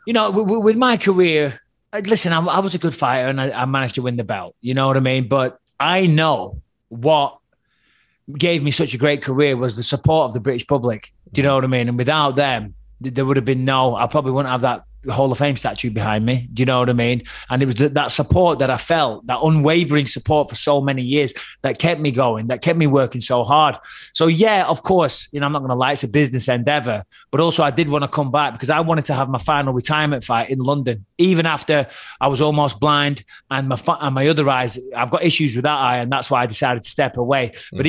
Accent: British